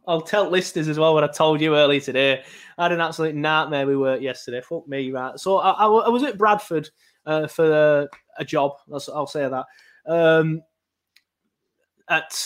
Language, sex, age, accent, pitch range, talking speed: English, male, 20-39, British, 135-170 Hz, 180 wpm